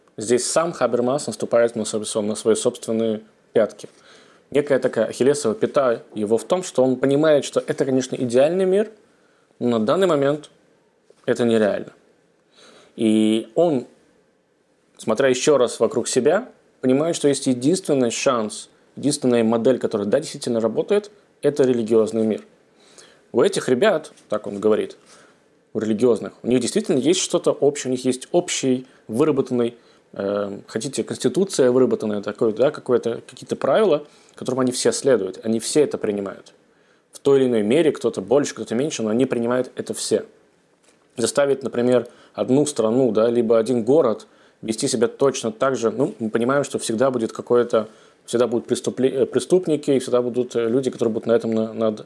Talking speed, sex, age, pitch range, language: 150 wpm, male, 20-39, 115-135 Hz, Russian